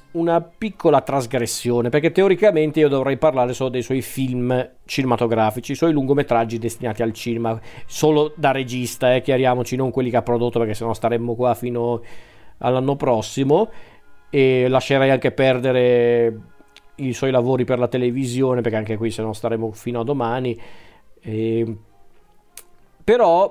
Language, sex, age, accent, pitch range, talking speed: Italian, male, 40-59, native, 120-150 Hz, 150 wpm